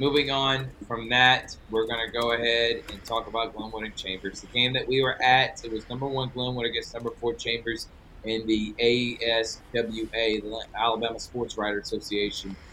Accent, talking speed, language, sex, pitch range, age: American, 180 wpm, English, male, 105-130 Hz, 30-49